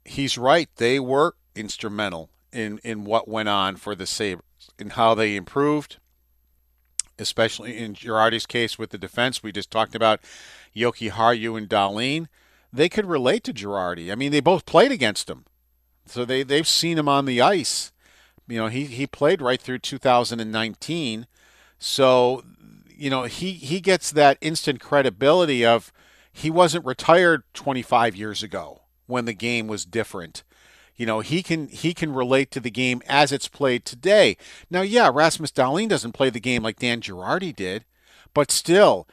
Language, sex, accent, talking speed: English, male, American, 165 wpm